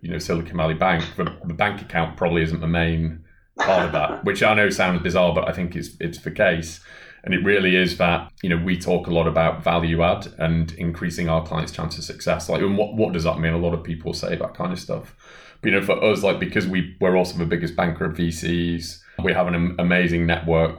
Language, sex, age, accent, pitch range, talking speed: English, male, 30-49, British, 85-90 Hz, 245 wpm